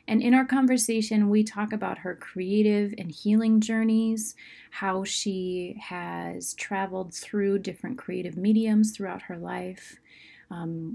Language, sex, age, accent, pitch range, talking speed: English, female, 30-49, American, 175-215 Hz, 130 wpm